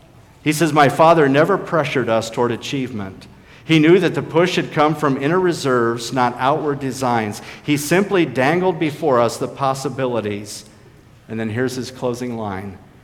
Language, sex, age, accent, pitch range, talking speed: English, male, 50-69, American, 115-140 Hz, 160 wpm